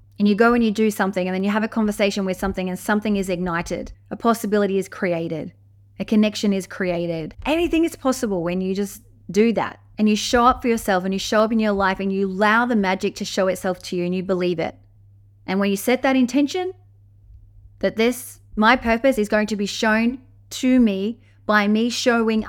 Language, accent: English, Australian